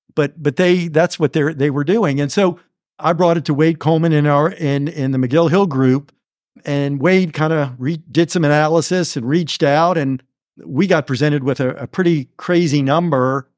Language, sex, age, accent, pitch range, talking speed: English, male, 50-69, American, 145-175 Hz, 200 wpm